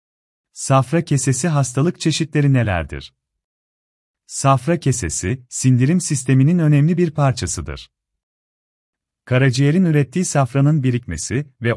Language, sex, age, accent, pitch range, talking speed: Turkish, male, 40-59, native, 105-150 Hz, 85 wpm